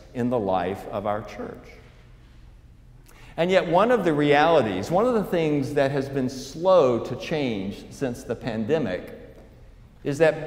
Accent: American